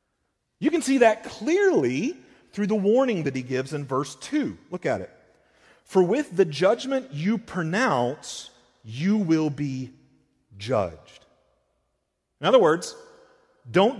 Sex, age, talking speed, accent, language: male, 40-59, 135 wpm, American, English